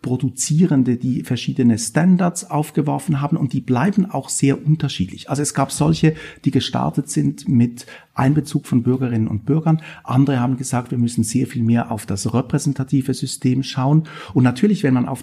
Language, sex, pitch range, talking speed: German, male, 120-150 Hz, 170 wpm